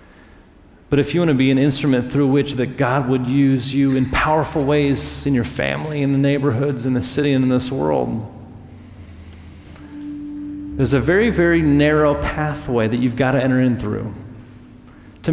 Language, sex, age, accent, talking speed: English, male, 40-59, American, 170 wpm